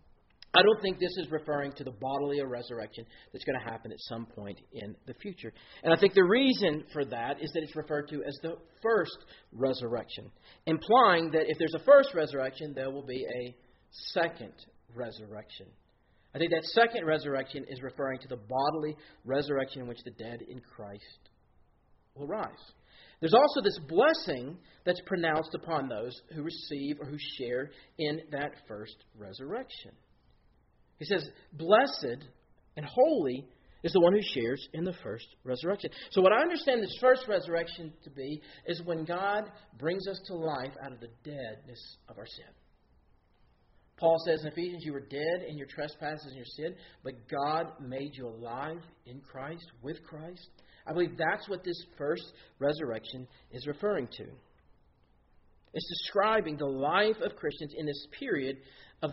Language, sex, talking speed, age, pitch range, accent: English, male, 165 wpm, 40-59, 125-165 Hz, American